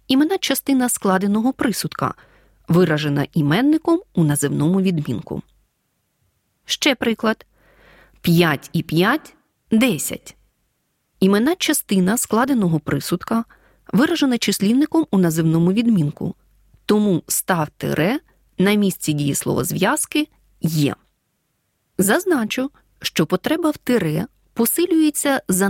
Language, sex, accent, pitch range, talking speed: Ukrainian, female, native, 170-280 Hz, 90 wpm